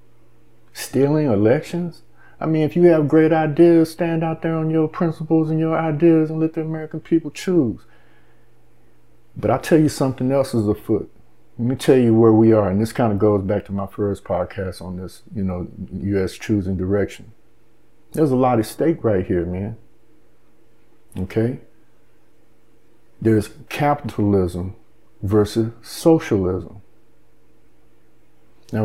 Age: 50-69